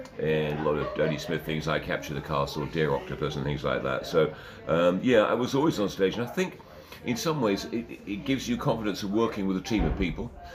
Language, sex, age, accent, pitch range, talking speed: English, male, 50-69, British, 80-105 Hz, 250 wpm